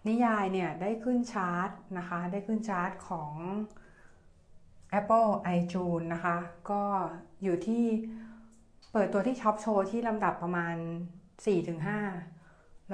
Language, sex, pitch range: Thai, female, 175-215 Hz